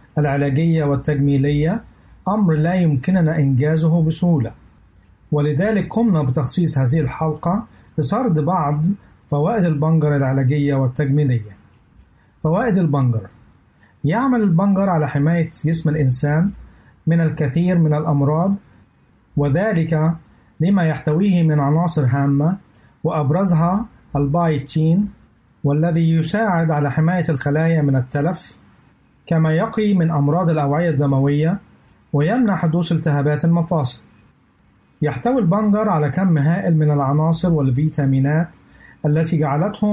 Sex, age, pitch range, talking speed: male, 50-69, 145-175 Hz, 100 wpm